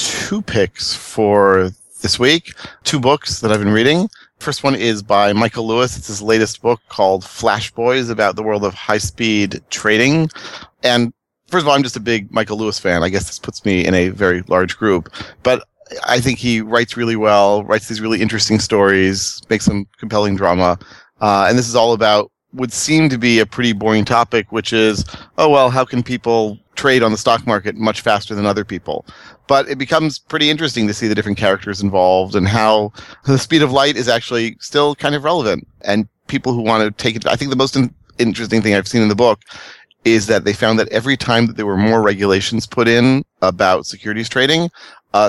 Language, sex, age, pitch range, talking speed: English, male, 30-49, 100-120 Hz, 210 wpm